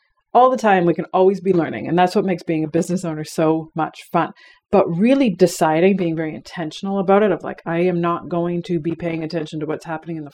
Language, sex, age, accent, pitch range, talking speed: English, female, 30-49, American, 165-205 Hz, 245 wpm